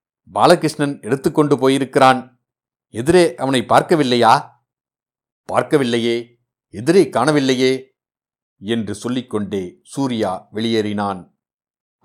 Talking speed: 65 wpm